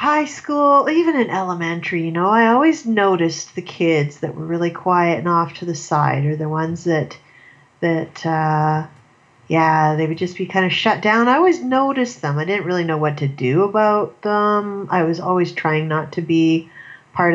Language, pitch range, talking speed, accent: English, 150-180 Hz, 195 wpm, American